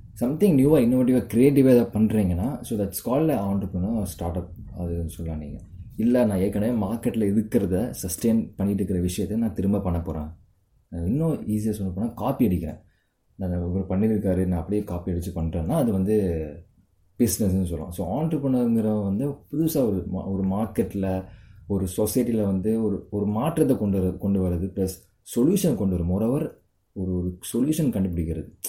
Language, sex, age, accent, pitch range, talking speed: Tamil, male, 20-39, native, 85-110 Hz, 140 wpm